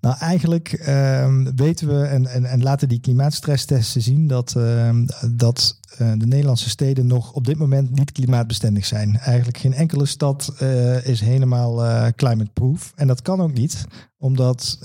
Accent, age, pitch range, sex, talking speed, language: Dutch, 50-69, 120-140 Hz, male, 165 wpm, Dutch